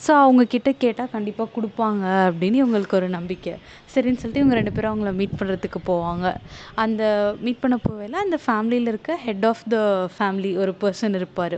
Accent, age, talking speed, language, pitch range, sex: native, 20-39, 170 wpm, Tamil, 195-235 Hz, female